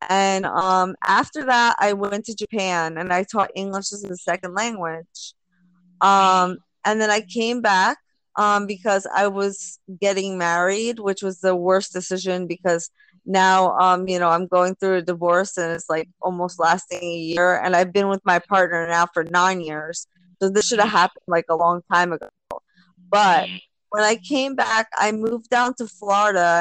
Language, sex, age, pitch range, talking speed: English, female, 20-39, 180-225 Hz, 180 wpm